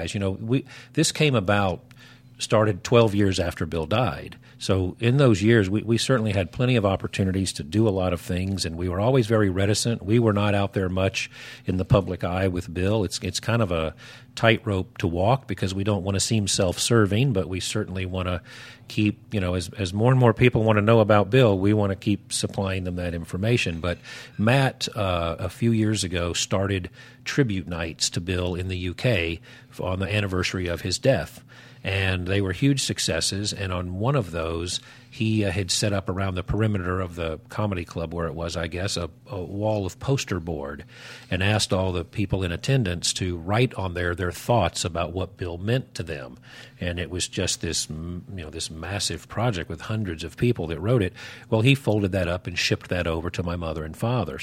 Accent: American